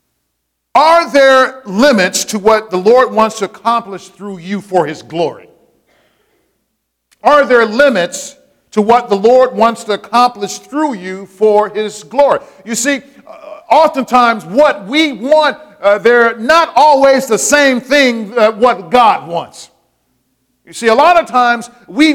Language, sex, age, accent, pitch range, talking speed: English, male, 50-69, American, 195-260 Hz, 145 wpm